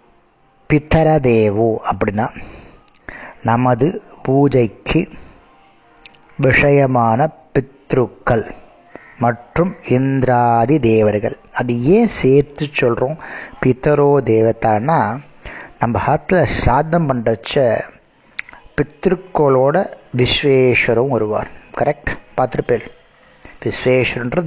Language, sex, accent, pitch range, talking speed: Tamil, male, native, 120-150 Hz, 65 wpm